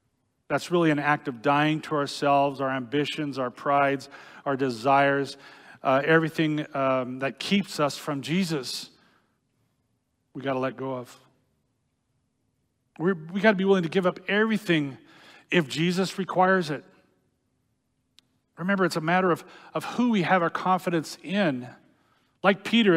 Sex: male